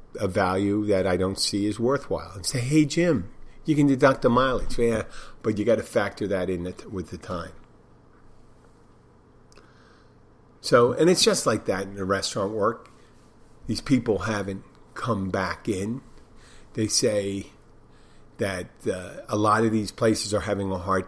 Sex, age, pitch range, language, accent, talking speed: male, 50-69, 95-115 Hz, English, American, 160 wpm